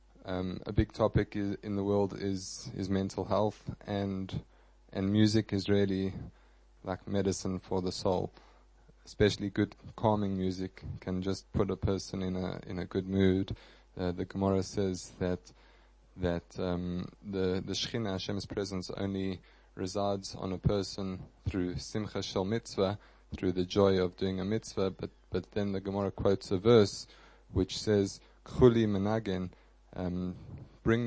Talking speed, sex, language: 155 wpm, male, English